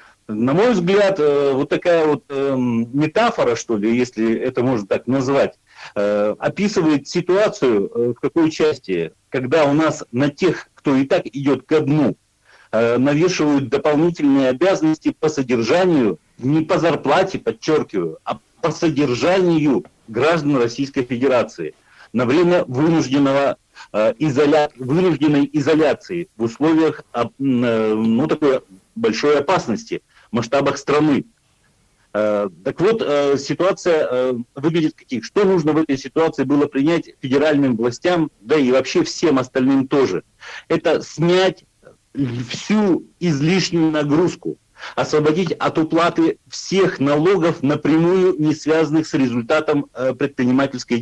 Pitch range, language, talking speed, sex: 130-165 Hz, Russian, 110 wpm, male